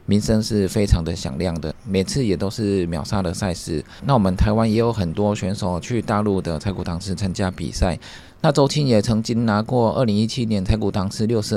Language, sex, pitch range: Chinese, male, 95-110 Hz